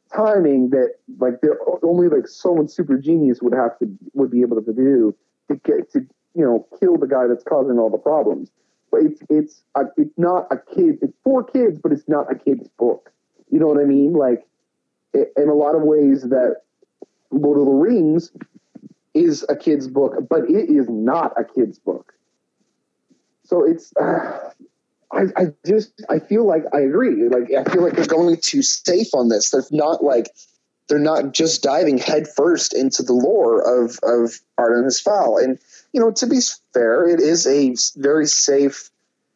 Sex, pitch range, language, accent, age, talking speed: male, 135-215 Hz, English, American, 30-49, 180 wpm